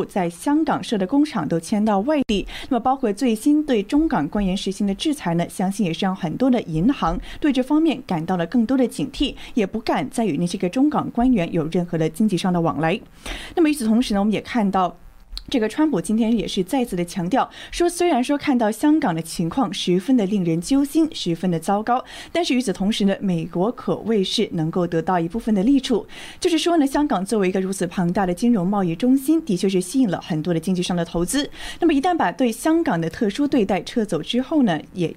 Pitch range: 180-270 Hz